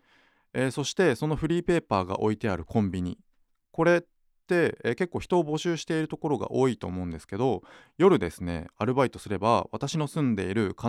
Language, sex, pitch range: Japanese, male, 90-140 Hz